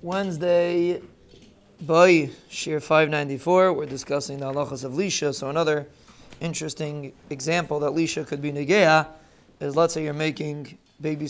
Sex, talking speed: male, 135 wpm